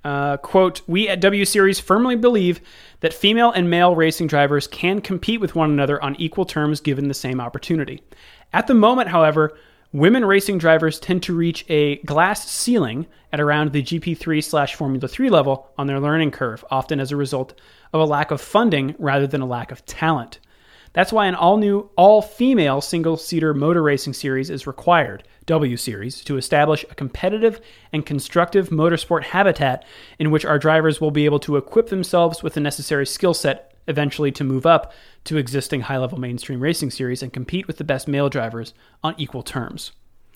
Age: 30-49